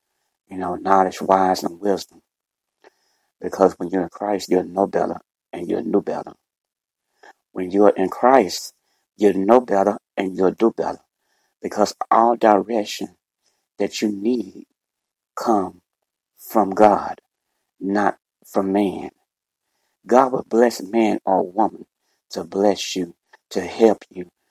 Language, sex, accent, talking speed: English, male, American, 130 wpm